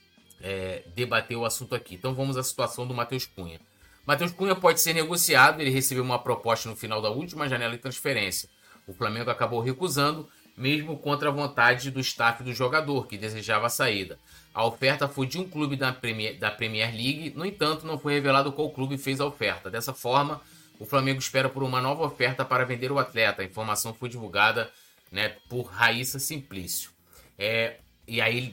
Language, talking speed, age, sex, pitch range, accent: Portuguese, 185 wpm, 20-39, male, 105-135 Hz, Brazilian